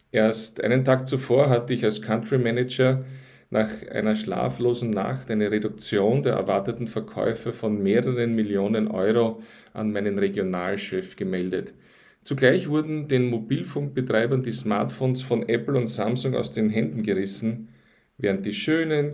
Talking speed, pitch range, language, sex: 135 wpm, 110-130 Hz, German, male